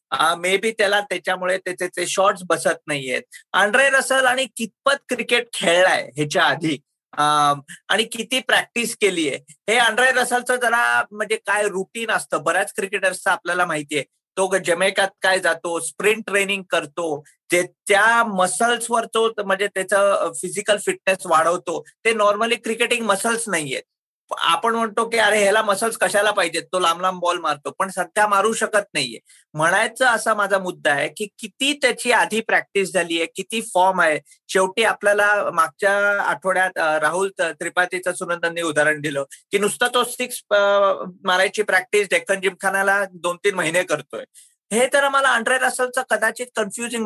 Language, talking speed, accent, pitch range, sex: Marathi, 150 wpm, native, 175-225 Hz, male